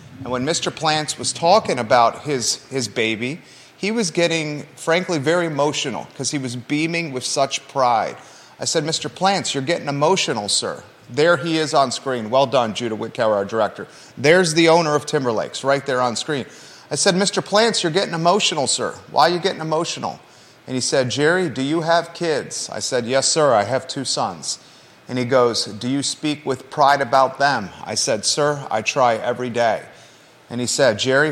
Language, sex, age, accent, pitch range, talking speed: English, male, 30-49, American, 125-155 Hz, 195 wpm